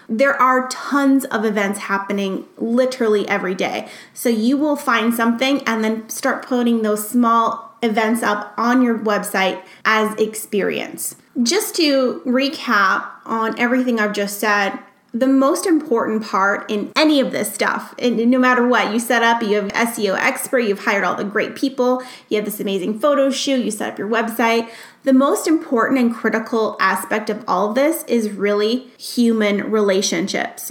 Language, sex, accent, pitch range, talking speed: English, female, American, 210-255 Hz, 170 wpm